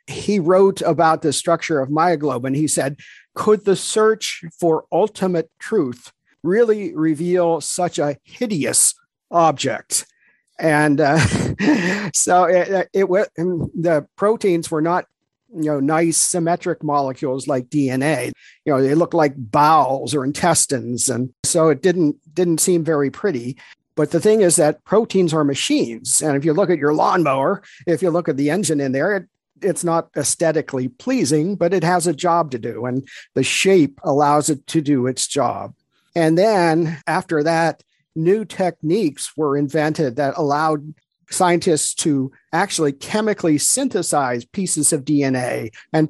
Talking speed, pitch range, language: 155 wpm, 145-180 Hz, English